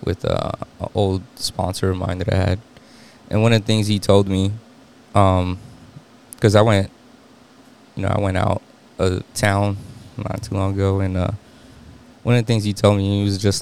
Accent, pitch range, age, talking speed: American, 100-120 Hz, 20-39, 200 wpm